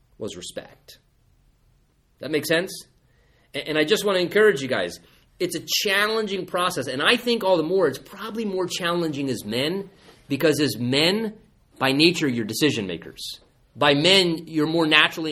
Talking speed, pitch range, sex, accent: 165 wpm, 130-170 Hz, male, American